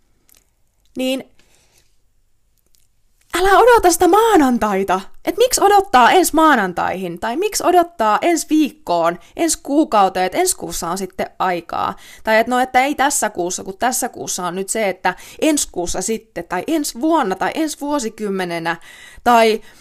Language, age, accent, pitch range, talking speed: Finnish, 20-39, native, 185-285 Hz, 140 wpm